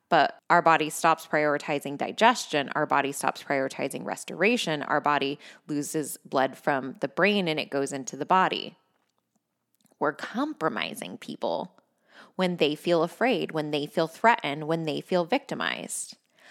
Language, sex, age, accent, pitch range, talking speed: English, female, 20-39, American, 170-215 Hz, 140 wpm